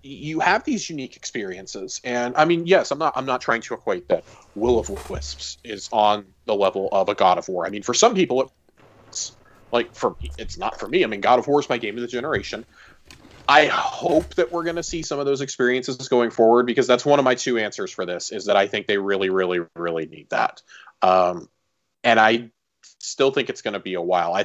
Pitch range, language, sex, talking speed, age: 105-140 Hz, English, male, 235 wpm, 30-49